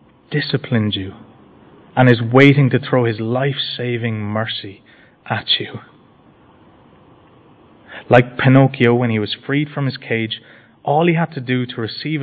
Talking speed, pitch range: 135 wpm, 110-135 Hz